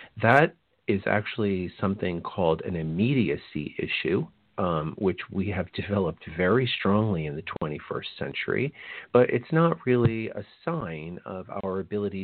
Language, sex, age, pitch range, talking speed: English, male, 40-59, 85-105 Hz, 135 wpm